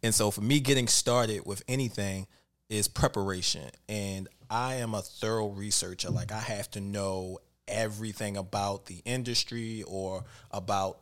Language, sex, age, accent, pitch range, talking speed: English, male, 20-39, American, 100-125 Hz, 145 wpm